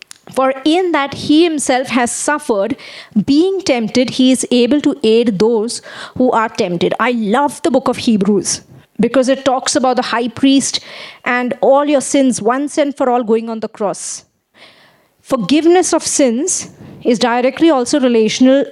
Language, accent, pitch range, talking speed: English, Indian, 230-280 Hz, 160 wpm